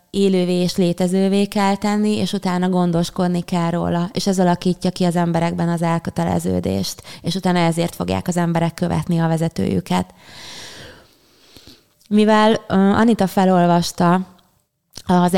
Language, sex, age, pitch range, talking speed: Hungarian, female, 20-39, 170-180 Hz, 120 wpm